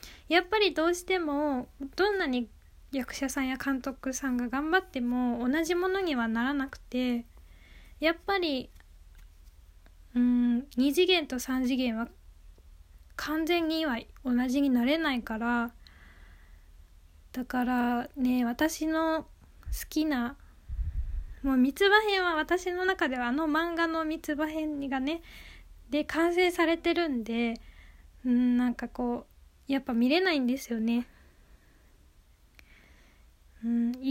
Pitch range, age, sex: 225-290 Hz, 20-39, female